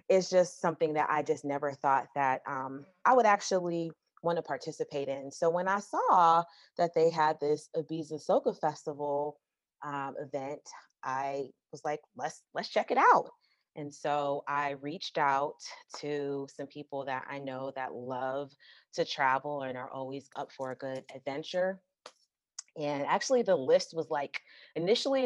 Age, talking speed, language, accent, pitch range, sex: 30-49, 160 wpm, English, American, 135-160 Hz, female